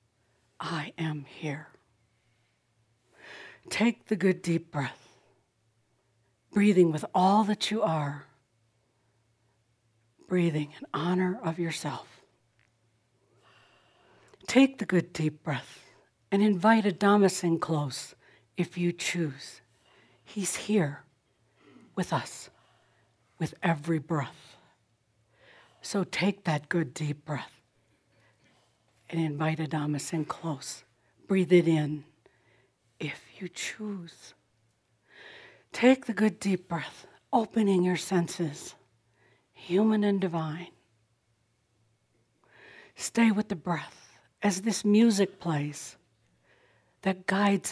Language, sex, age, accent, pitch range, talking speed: English, female, 60-79, American, 120-180 Hz, 95 wpm